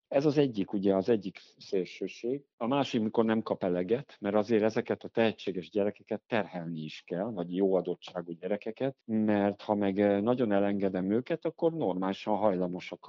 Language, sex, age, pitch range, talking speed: Hungarian, male, 50-69, 90-115 Hz, 155 wpm